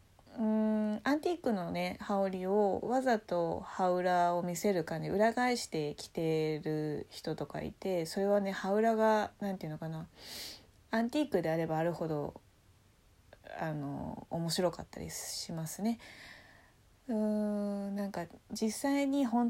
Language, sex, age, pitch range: Japanese, female, 20-39, 150-220 Hz